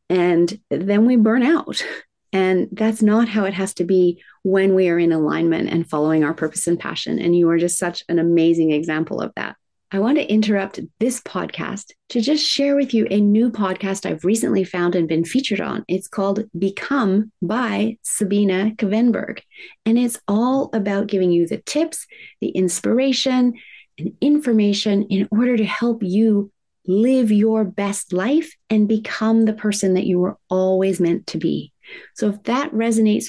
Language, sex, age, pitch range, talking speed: English, female, 30-49, 185-230 Hz, 175 wpm